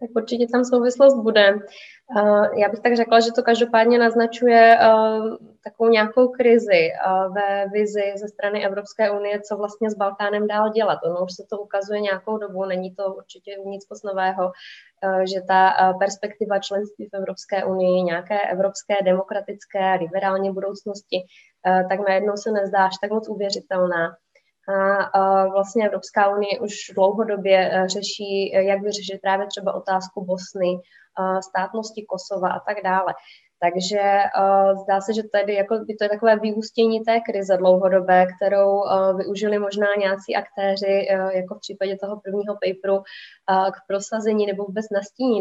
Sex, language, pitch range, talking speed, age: female, Czech, 190-210 Hz, 145 wpm, 20-39